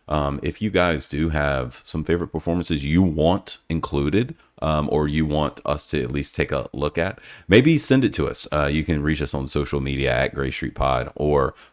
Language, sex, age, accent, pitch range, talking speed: English, male, 30-49, American, 75-95 Hz, 215 wpm